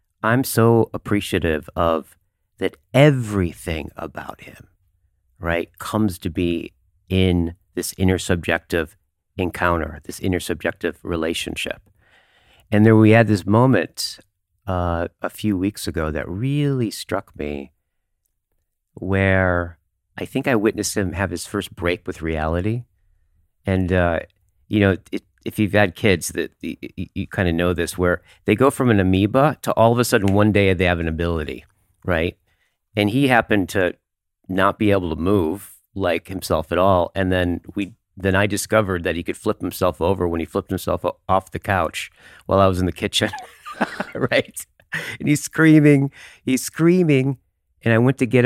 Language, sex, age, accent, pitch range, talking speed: English, male, 40-59, American, 85-105 Hz, 160 wpm